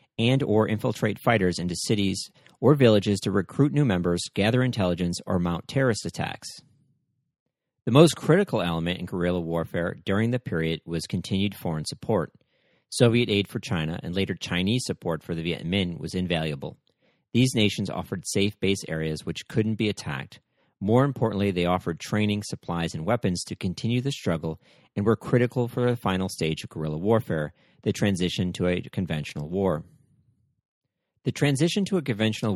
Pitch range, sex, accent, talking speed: 85-115 Hz, male, American, 165 wpm